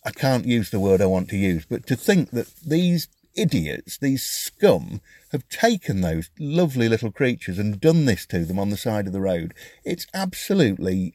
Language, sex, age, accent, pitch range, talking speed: English, male, 50-69, British, 95-150 Hz, 195 wpm